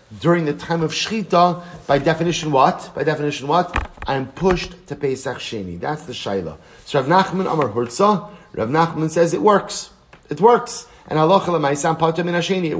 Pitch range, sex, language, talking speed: 130-170 Hz, male, English, 175 wpm